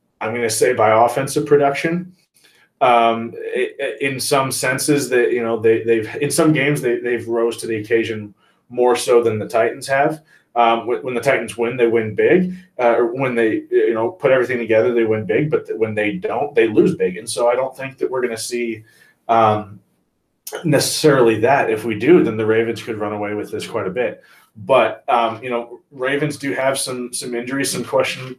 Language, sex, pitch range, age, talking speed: English, male, 115-140 Hz, 20-39, 200 wpm